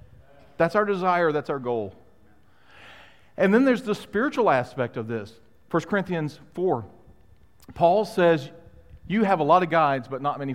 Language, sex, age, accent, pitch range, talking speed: English, male, 40-59, American, 95-140 Hz, 160 wpm